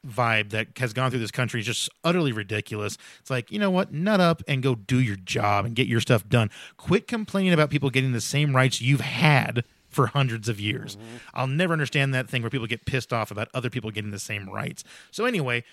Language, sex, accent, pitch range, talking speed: English, male, American, 120-155 Hz, 235 wpm